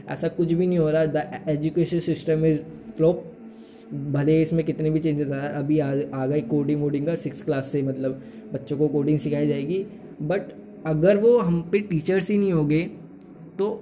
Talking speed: 185 wpm